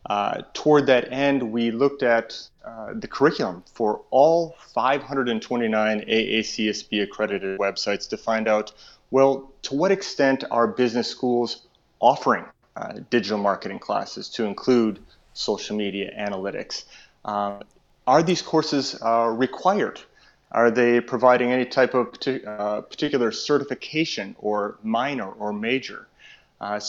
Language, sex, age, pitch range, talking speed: English, male, 30-49, 105-135 Hz, 125 wpm